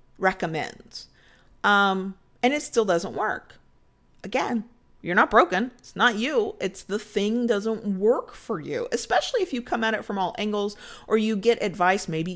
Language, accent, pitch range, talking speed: English, American, 175-230 Hz, 165 wpm